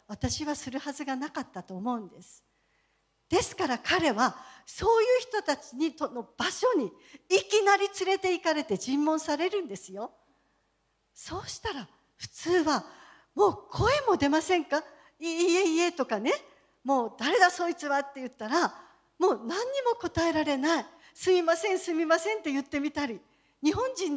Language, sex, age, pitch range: Japanese, female, 50-69, 265-360 Hz